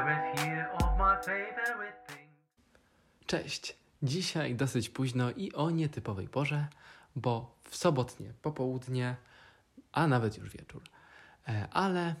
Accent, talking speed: native, 85 wpm